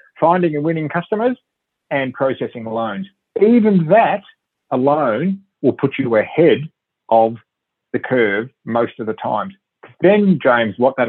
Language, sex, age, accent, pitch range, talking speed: English, male, 40-59, Australian, 115-175 Hz, 135 wpm